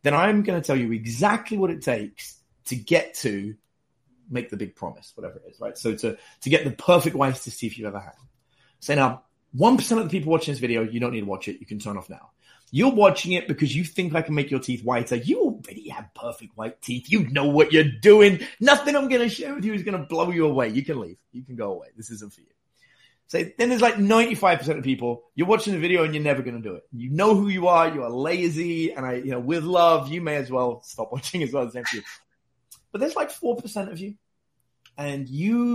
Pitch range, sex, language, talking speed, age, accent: 125-190 Hz, male, English, 250 wpm, 30-49, British